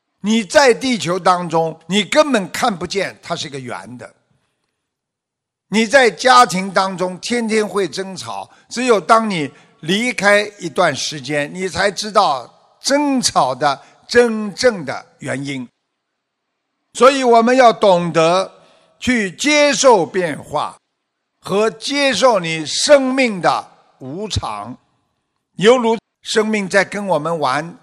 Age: 50-69